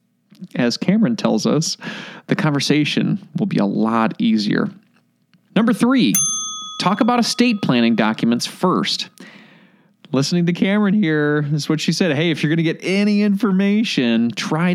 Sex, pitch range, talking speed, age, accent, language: male, 150-210 Hz, 150 wpm, 30-49, American, English